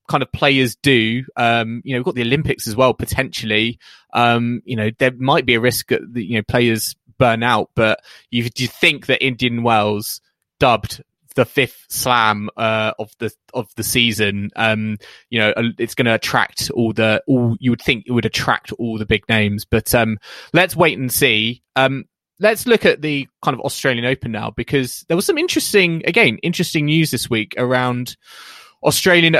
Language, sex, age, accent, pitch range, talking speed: English, male, 20-39, British, 115-140 Hz, 190 wpm